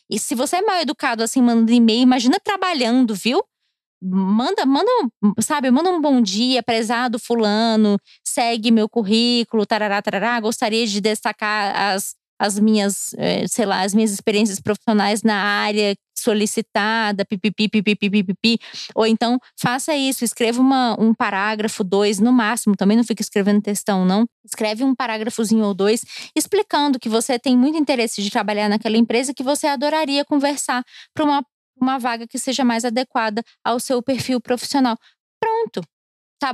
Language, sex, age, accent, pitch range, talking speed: Portuguese, female, 20-39, Brazilian, 215-260 Hz, 160 wpm